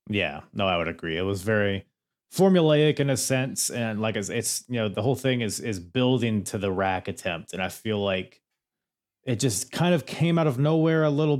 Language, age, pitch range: English, 30-49, 95-125 Hz